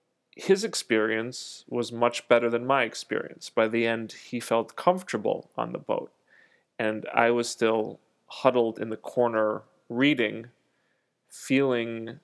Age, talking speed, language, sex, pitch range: 30-49, 130 wpm, English, male, 110-130 Hz